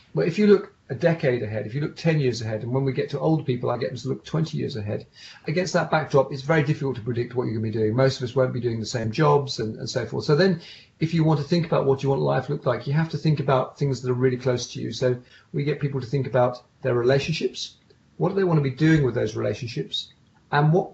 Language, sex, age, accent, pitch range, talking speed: English, male, 40-59, British, 125-155 Hz, 295 wpm